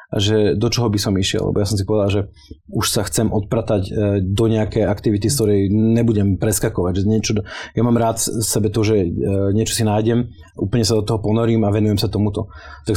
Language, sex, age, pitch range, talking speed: Slovak, male, 30-49, 100-115 Hz, 205 wpm